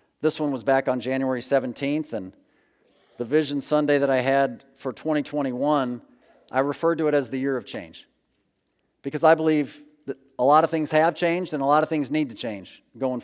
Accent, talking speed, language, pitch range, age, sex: American, 200 wpm, English, 145-205 Hz, 50-69, male